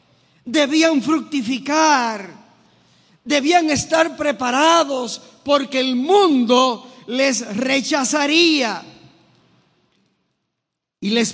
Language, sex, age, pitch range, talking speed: English, male, 50-69, 165-255 Hz, 65 wpm